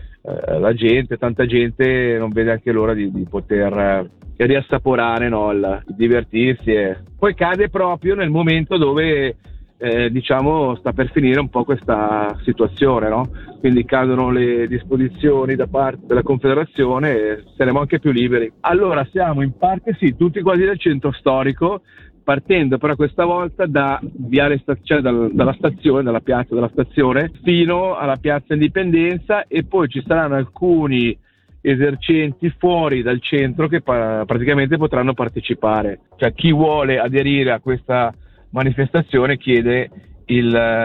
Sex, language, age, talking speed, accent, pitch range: male, Italian, 40-59, 130 wpm, native, 120-155 Hz